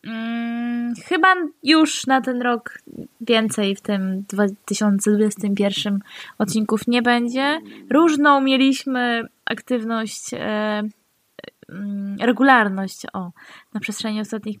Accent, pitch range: native, 215-245 Hz